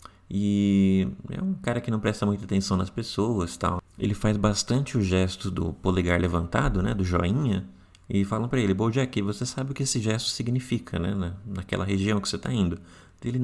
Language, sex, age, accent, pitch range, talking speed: Portuguese, male, 20-39, Brazilian, 95-115 Hz, 195 wpm